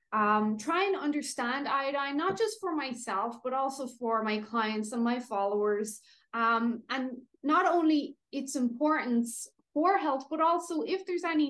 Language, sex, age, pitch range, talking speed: English, female, 20-39, 215-290 Hz, 155 wpm